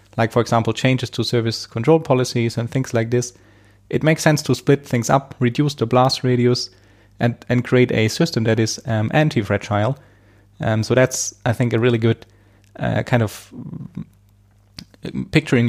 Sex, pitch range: male, 110-130 Hz